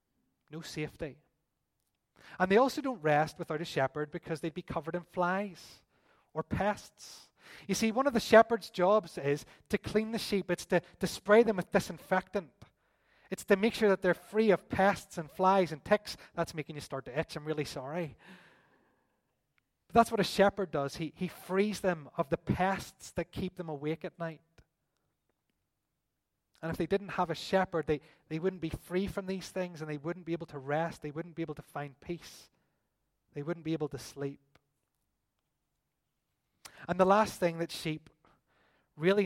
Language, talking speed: English, 185 wpm